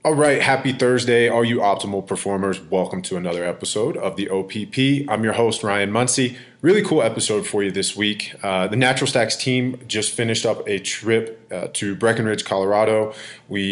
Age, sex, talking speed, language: 20-39, male, 185 wpm, English